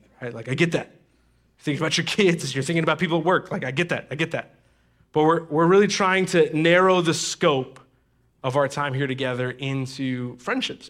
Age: 20-39